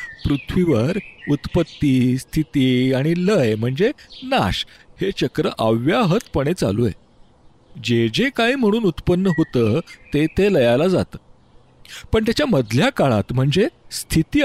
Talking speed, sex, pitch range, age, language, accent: 115 wpm, male, 135-195 Hz, 40-59, Marathi, native